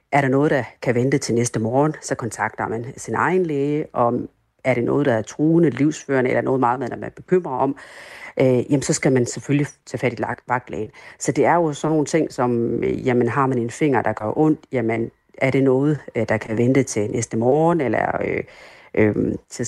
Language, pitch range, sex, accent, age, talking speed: Danish, 120-145 Hz, female, native, 40-59, 190 wpm